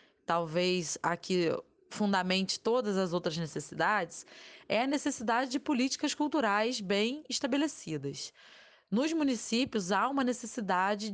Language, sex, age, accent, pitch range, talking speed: Portuguese, female, 20-39, Brazilian, 200-275 Hz, 110 wpm